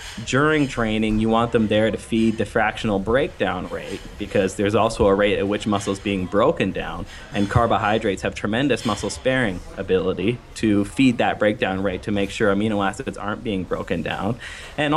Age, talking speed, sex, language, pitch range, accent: 20-39, 180 wpm, male, English, 105-120 Hz, American